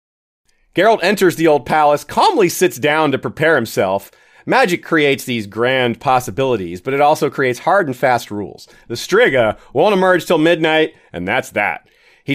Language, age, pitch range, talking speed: English, 30-49, 135-185 Hz, 165 wpm